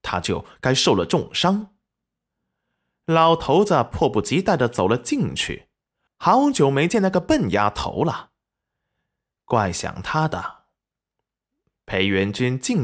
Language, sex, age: Chinese, male, 20-39